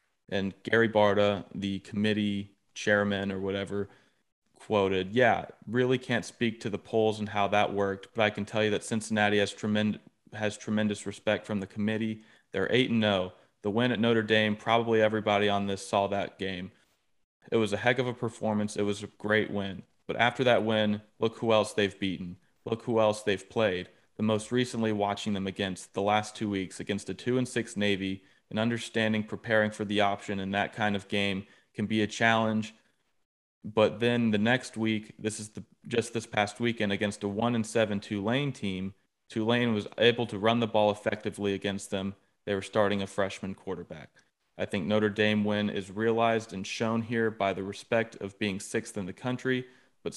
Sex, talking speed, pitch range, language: male, 195 wpm, 100-115 Hz, English